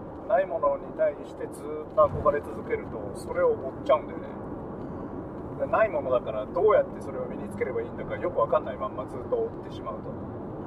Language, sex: Japanese, male